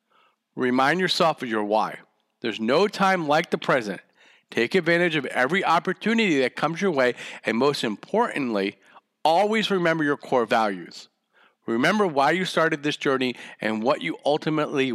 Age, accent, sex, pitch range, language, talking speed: 40-59, American, male, 130-175 Hz, English, 155 wpm